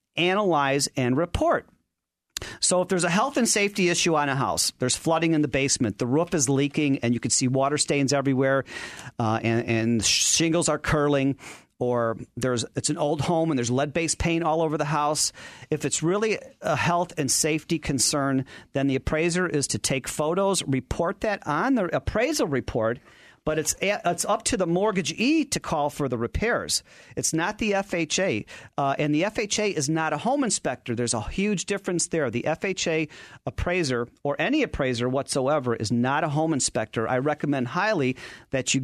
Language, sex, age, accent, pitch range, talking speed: English, male, 40-59, American, 130-170 Hz, 180 wpm